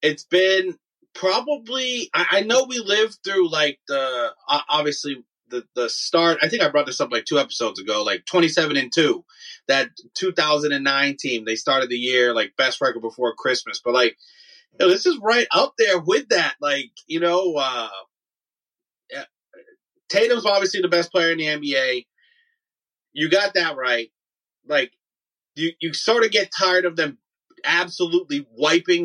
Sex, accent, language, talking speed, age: male, American, English, 165 wpm, 30-49